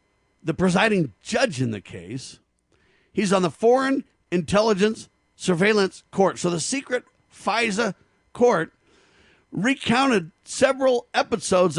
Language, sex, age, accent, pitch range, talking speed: English, male, 50-69, American, 145-230 Hz, 105 wpm